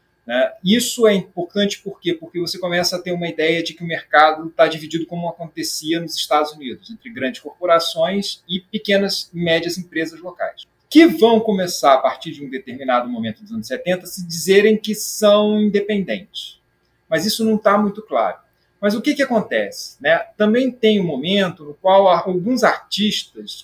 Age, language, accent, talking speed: 40-59, Portuguese, Brazilian, 175 wpm